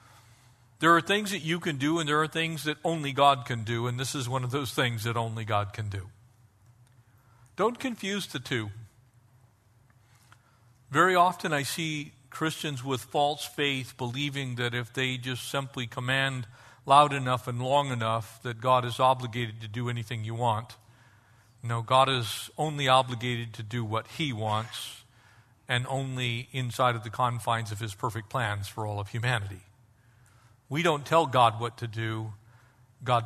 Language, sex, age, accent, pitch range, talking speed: English, male, 50-69, American, 115-135 Hz, 170 wpm